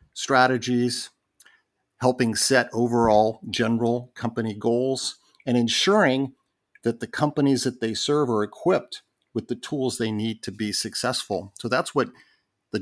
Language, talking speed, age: English, 135 wpm, 50-69